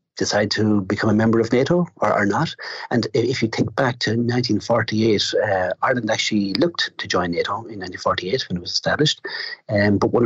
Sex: male